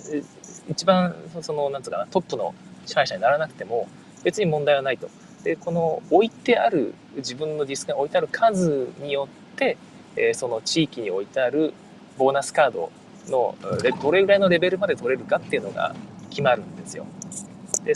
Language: Japanese